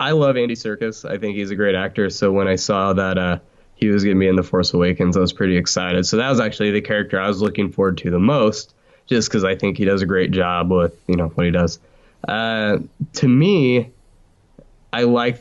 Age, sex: 20-39, male